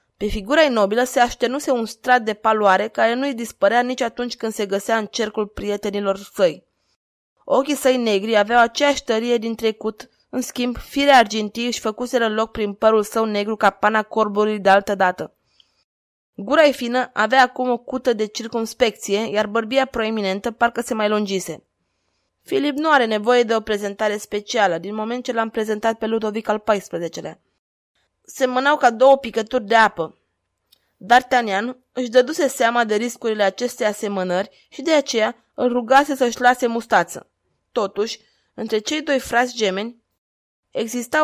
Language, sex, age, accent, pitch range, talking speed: Romanian, female, 20-39, native, 210-255 Hz, 165 wpm